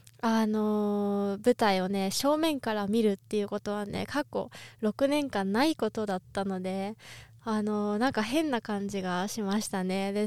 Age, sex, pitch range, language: 20-39, female, 200-255 Hz, Japanese